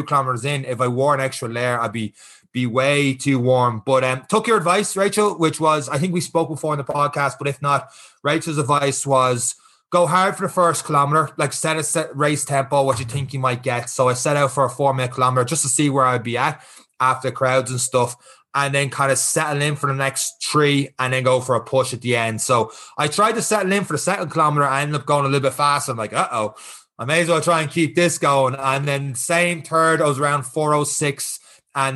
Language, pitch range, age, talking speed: English, 125-150 Hz, 20-39, 250 wpm